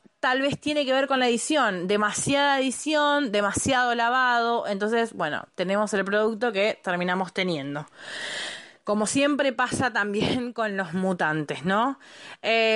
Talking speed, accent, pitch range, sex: 135 wpm, Argentinian, 195-255 Hz, female